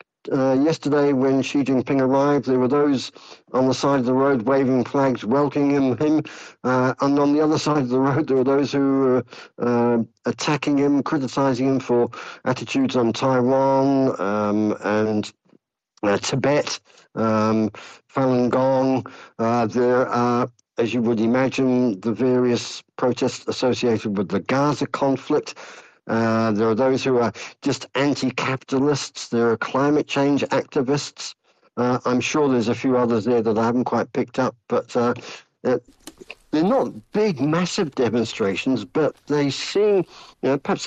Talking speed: 155 wpm